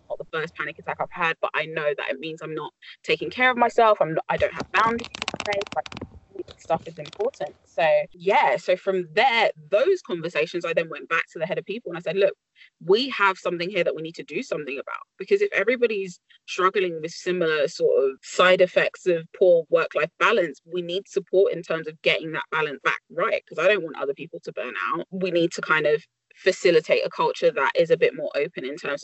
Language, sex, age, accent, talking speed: English, female, 20-39, British, 225 wpm